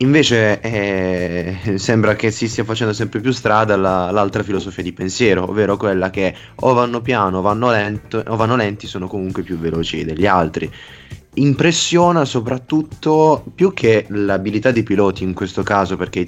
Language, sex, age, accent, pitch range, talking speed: Italian, male, 20-39, native, 95-125 Hz, 165 wpm